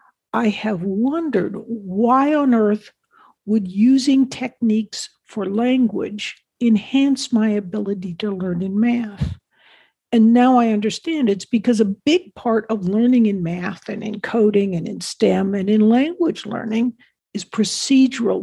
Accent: American